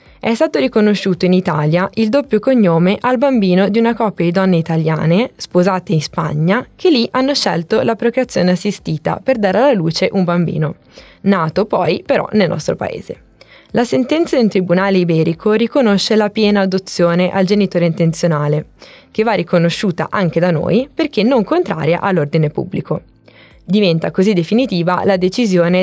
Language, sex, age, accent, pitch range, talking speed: Italian, female, 20-39, native, 170-205 Hz, 155 wpm